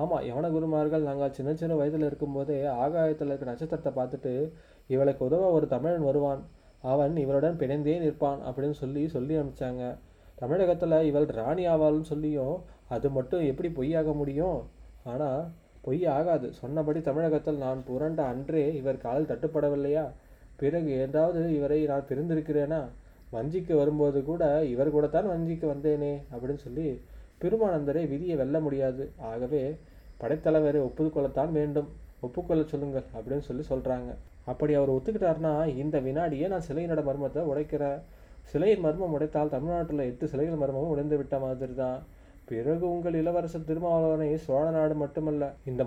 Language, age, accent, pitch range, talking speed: Tamil, 20-39, native, 135-155 Hz, 130 wpm